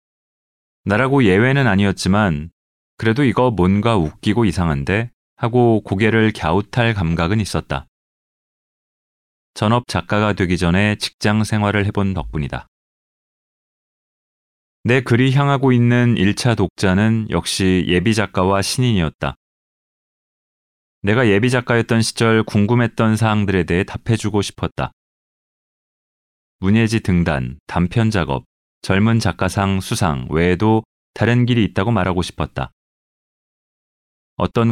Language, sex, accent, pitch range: Korean, male, native, 90-115 Hz